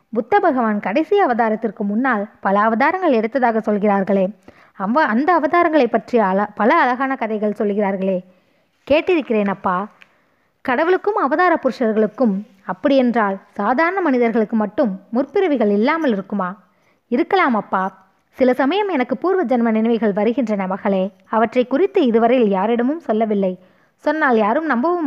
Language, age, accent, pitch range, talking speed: Tamil, 20-39, native, 205-270 Hz, 110 wpm